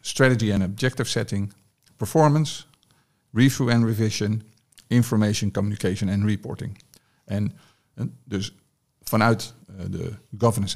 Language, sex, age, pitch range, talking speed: Dutch, male, 50-69, 100-120 Hz, 95 wpm